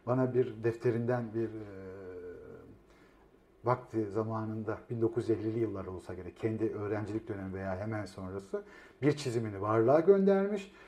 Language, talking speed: Turkish, 115 wpm